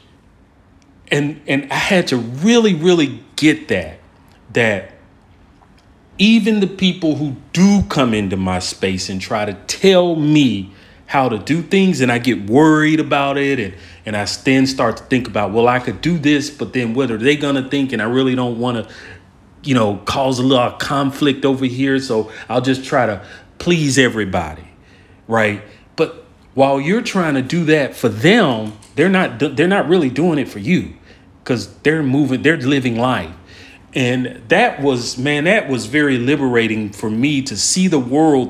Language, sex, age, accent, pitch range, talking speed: English, male, 40-59, American, 105-145 Hz, 180 wpm